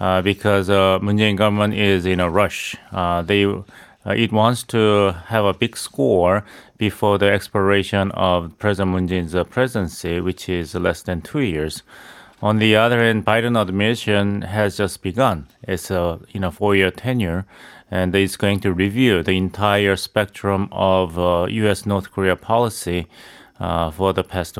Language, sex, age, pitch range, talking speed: English, male, 30-49, 95-110 Hz, 160 wpm